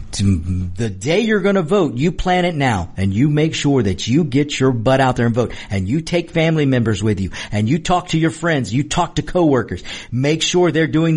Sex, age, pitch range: male, 50-69, 120-180 Hz